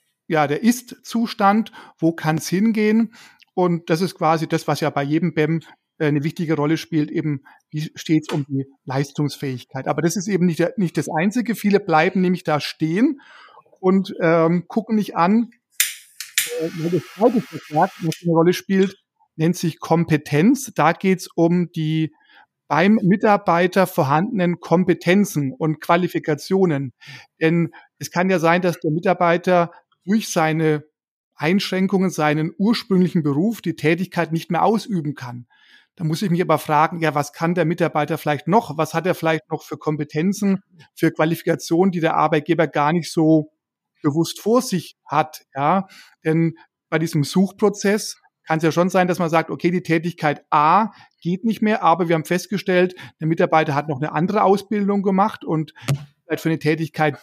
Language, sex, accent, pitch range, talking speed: German, male, German, 155-190 Hz, 165 wpm